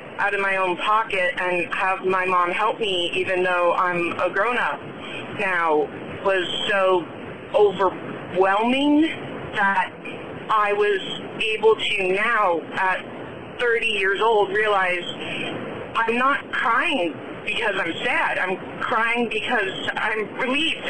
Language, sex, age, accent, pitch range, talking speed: English, female, 40-59, American, 210-270 Hz, 125 wpm